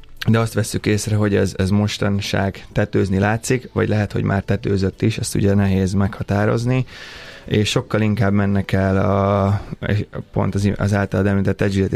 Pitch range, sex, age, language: 100-110 Hz, male, 20-39, Hungarian